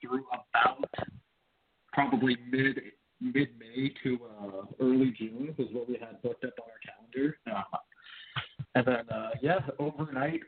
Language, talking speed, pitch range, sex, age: English, 130 wpm, 125-150 Hz, male, 40-59